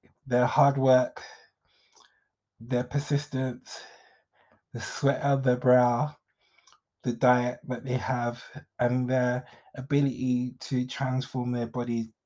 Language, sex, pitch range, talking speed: English, male, 120-135 Hz, 110 wpm